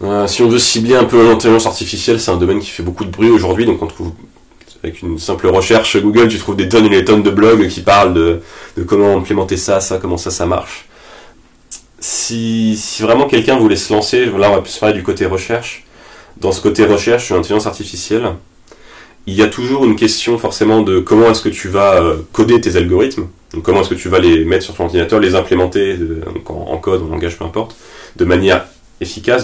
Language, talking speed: French, 210 wpm